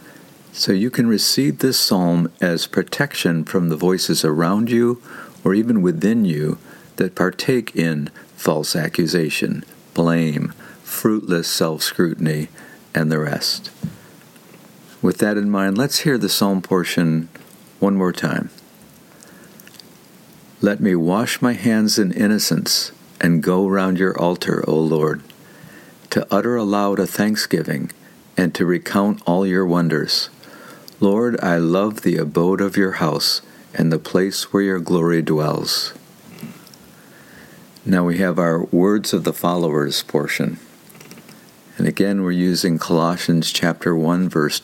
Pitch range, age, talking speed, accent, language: 80-100 Hz, 60-79, 130 wpm, American, English